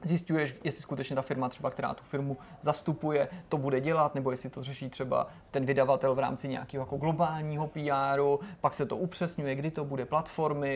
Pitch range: 135-160 Hz